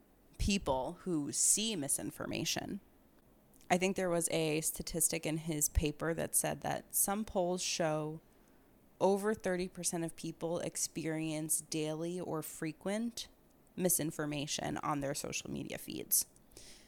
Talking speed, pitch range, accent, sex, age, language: 120 wpm, 150-185 Hz, American, female, 20-39, English